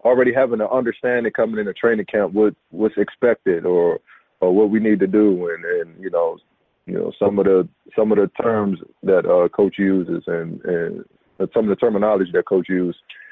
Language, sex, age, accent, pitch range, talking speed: English, male, 20-39, American, 95-115 Hz, 205 wpm